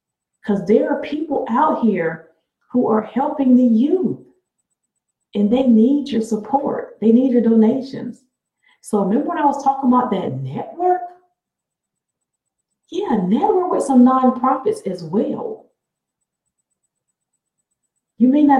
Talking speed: 125 wpm